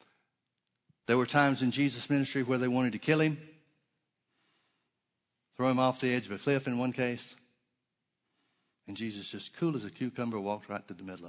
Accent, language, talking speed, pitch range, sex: American, English, 185 wpm, 110-145 Hz, male